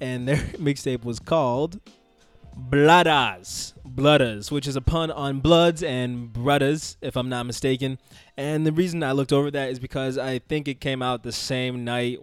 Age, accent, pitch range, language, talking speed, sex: 20-39, American, 125-145 Hz, English, 175 wpm, male